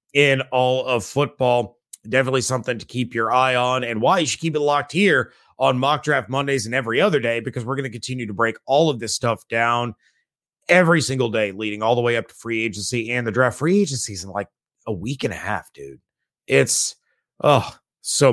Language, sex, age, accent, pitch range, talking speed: English, male, 30-49, American, 120-145 Hz, 215 wpm